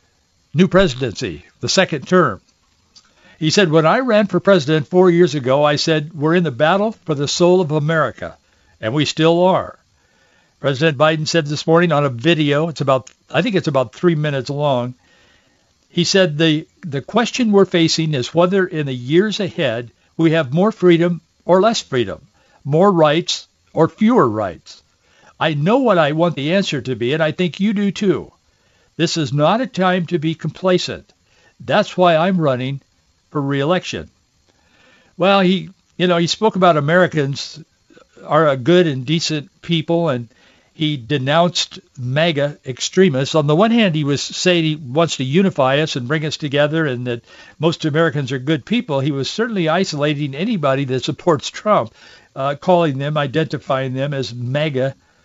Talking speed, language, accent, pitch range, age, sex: 170 wpm, English, American, 140-180 Hz, 60-79, male